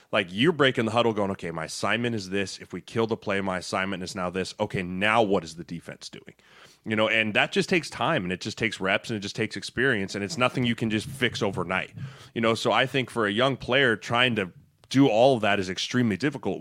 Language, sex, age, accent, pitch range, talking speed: English, male, 20-39, American, 105-135 Hz, 255 wpm